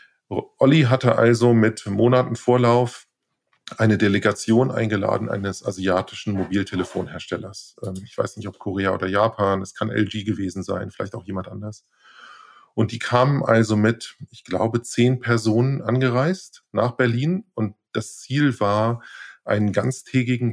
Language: German